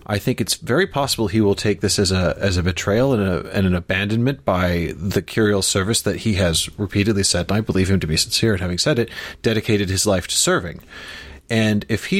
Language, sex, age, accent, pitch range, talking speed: English, male, 30-49, American, 85-110 Hz, 230 wpm